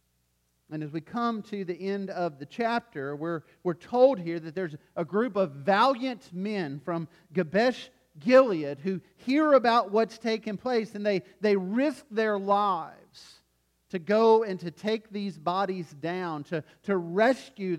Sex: male